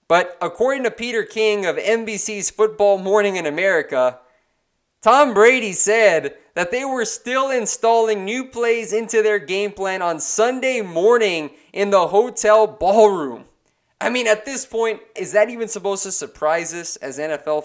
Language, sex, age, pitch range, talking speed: English, male, 20-39, 170-220 Hz, 155 wpm